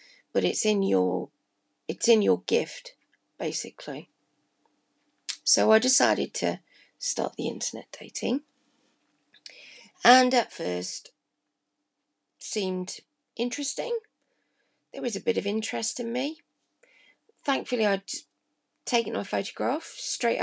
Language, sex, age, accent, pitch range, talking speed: English, female, 40-59, British, 180-255 Hz, 105 wpm